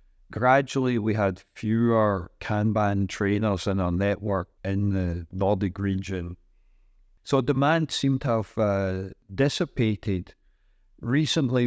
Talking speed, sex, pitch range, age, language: 110 wpm, male, 95-115 Hz, 50-69, Danish